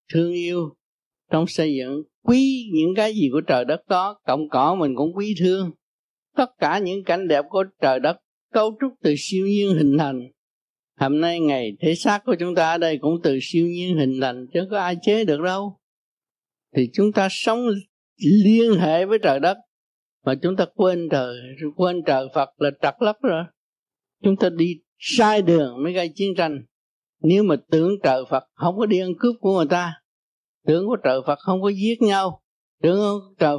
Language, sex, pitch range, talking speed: Vietnamese, male, 145-195 Hz, 195 wpm